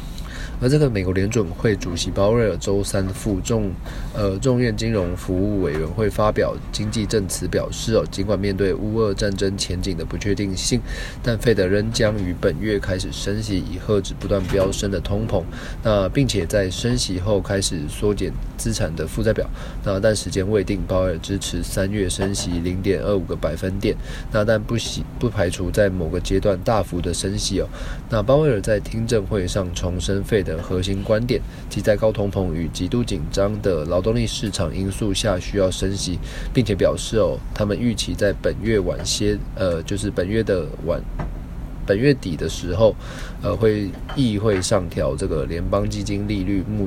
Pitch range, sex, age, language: 95-110 Hz, male, 20-39, Chinese